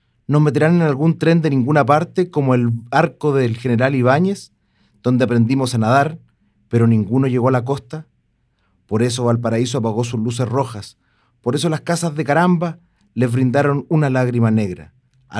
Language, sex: Spanish, male